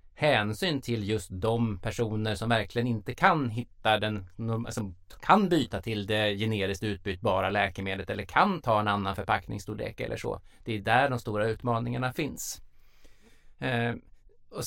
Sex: male